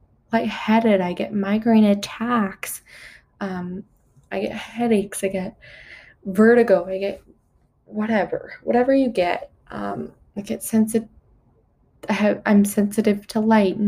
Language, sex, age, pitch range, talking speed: English, female, 20-39, 190-220 Hz, 120 wpm